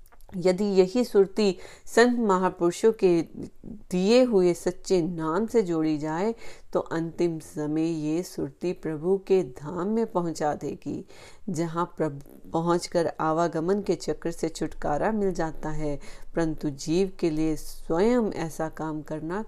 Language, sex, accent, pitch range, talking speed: Hindi, female, native, 155-195 Hz, 130 wpm